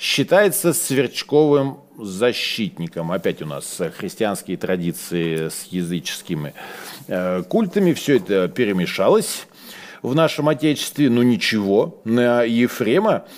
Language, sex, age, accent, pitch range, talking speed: Russian, male, 40-59, native, 110-165 Hz, 95 wpm